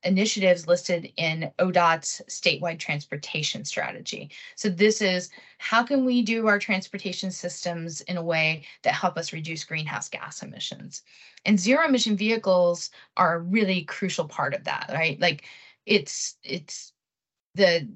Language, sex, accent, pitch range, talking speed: English, female, American, 170-215 Hz, 145 wpm